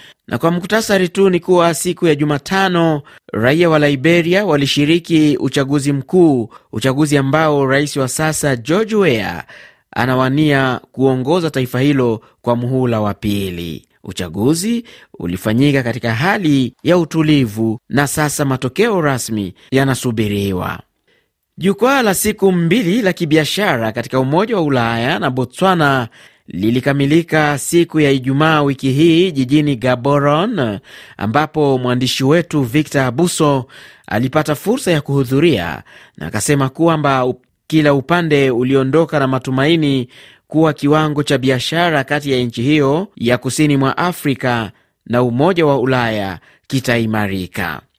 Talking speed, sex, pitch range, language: 120 wpm, male, 125-165 Hz, Swahili